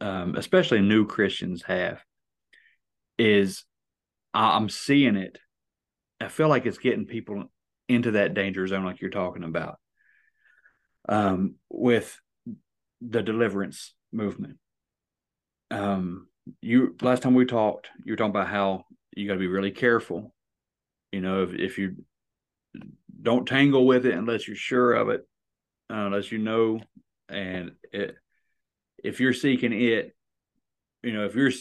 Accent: American